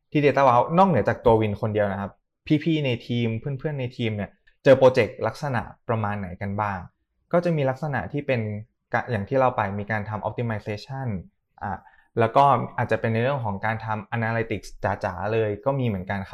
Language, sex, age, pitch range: Thai, male, 20-39, 105-135 Hz